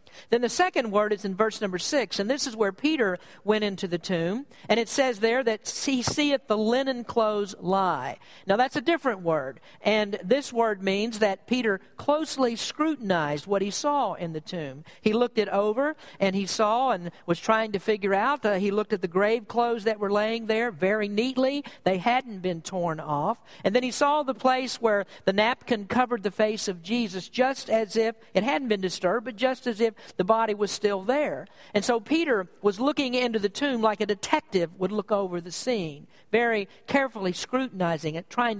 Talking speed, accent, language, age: 200 wpm, American, English, 50-69